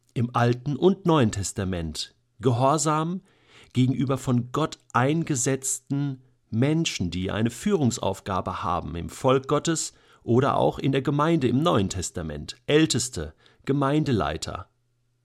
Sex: male